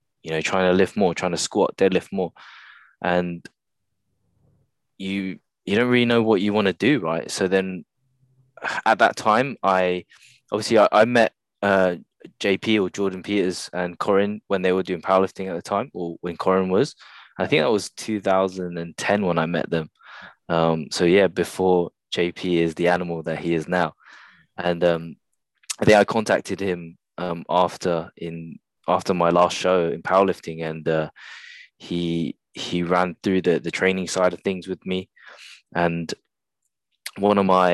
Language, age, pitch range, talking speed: English, 20-39, 85-95 Hz, 170 wpm